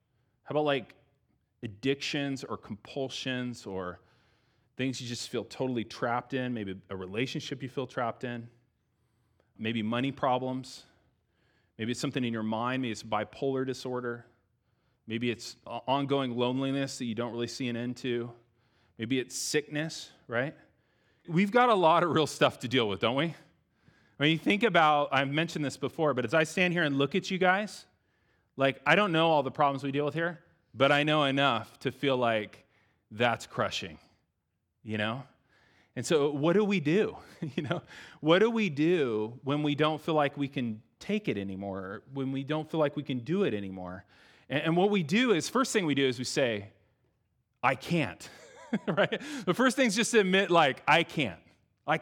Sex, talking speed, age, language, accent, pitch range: male, 185 wpm, 30-49, English, American, 115-150 Hz